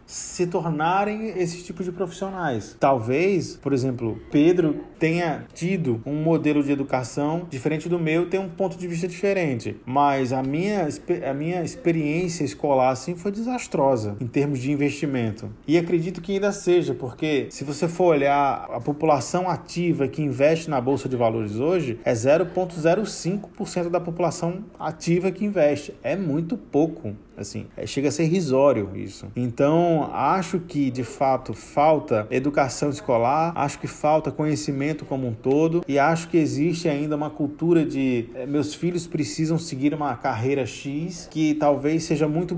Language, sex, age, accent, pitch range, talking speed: Portuguese, male, 20-39, Brazilian, 135-170 Hz, 155 wpm